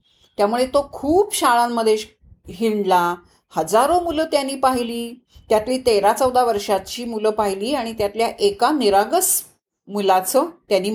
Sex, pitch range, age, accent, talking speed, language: female, 210-285 Hz, 40-59, native, 115 wpm, Marathi